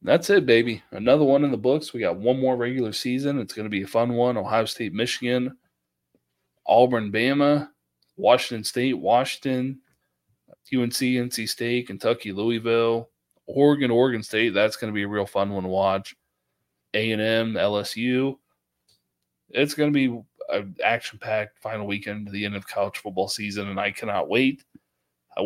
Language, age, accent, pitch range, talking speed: English, 20-39, American, 105-125 Hz, 165 wpm